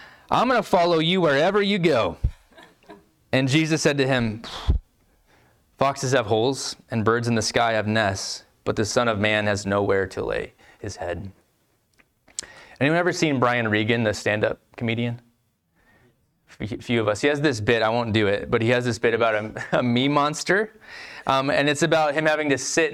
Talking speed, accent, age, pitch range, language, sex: 190 wpm, American, 20-39, 110-140 Hz, English, male